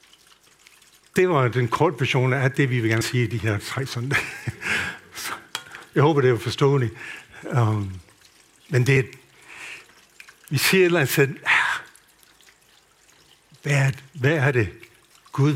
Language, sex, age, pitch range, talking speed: Danish, male, 60-79, 115-145 Hz, 130 wpm